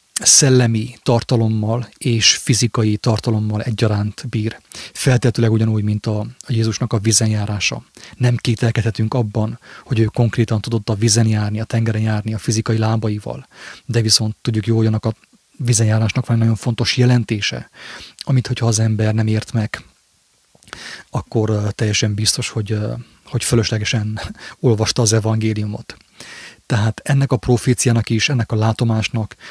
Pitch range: 110-120 Hz